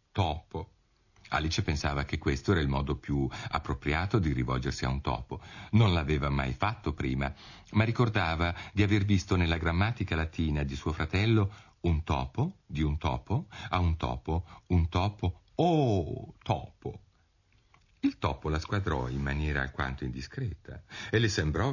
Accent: native